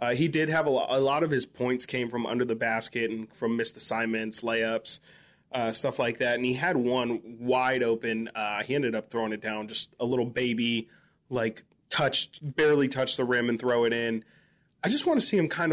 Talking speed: 220 wpm